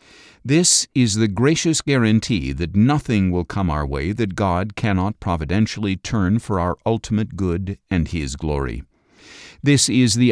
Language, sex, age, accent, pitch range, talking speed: English, male, 50-69, American, 95-125 Hz, 150 wpm